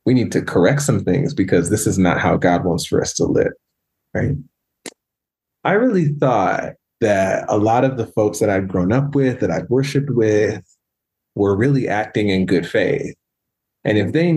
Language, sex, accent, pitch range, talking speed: English, male, American, 105-140 Hz, 190 wpm